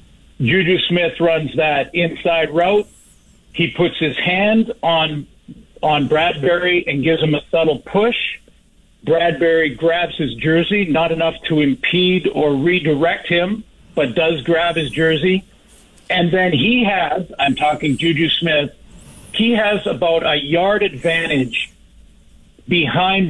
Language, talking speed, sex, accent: English, 130 wpm, male, American